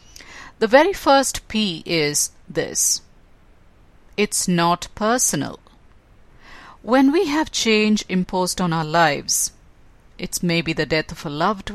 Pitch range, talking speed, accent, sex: 160-205 Hz, 125 wpm, Indian, female